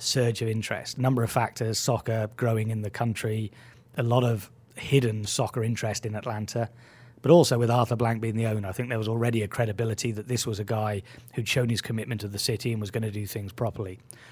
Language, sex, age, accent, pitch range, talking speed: English, male, 30-49, British, 110-125 Hz, 220 wpm